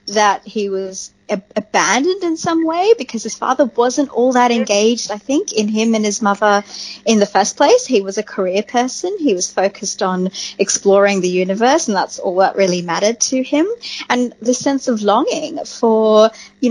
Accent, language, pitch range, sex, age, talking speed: Australian, English, 195-250 Hz, female, 30-49, 185 wpm